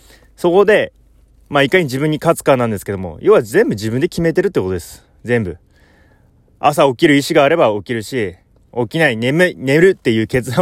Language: Japanese